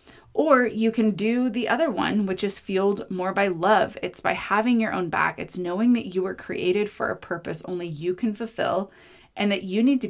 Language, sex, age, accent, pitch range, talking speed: English, female, 20-39, American, 180-215 Hz, 220 wpm